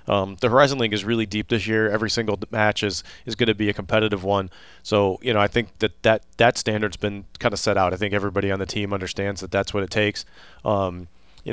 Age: 30-49